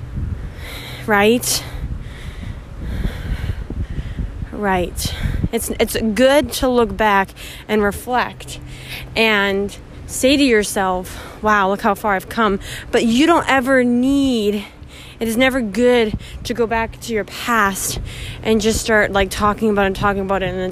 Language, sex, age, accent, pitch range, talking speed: English, female, 20-39, American, 195-230 Hz, 140 wpm